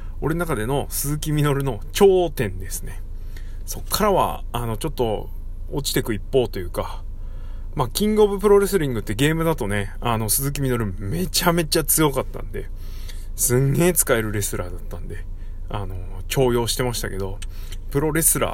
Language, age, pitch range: Japanese, 20-39, 90-135 Hz